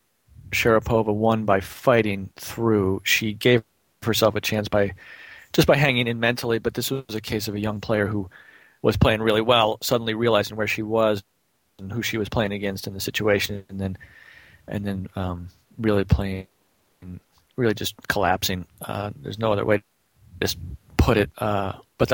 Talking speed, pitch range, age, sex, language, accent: 175 wpm, 100-115 Hz, 40-59, male, English, American